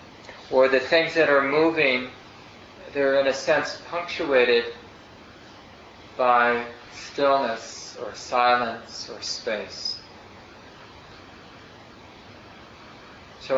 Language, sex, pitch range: English, male, 120-140 Hz